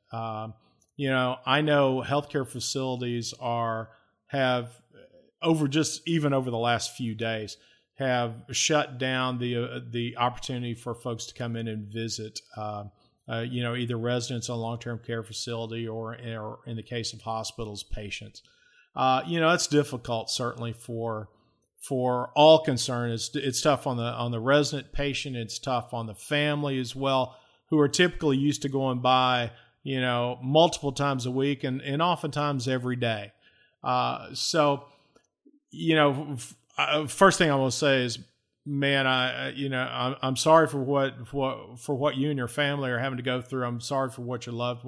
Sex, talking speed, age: male, 180 wpm, 40-59